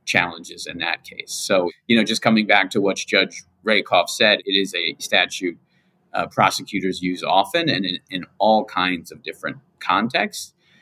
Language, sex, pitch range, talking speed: English, male, 95-155 Hz, 170 wpm